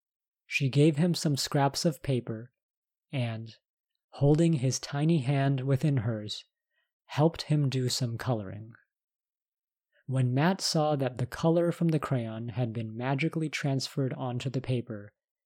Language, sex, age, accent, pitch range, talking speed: English, male, 30-49, American, 115-140 Hz, 135 wpm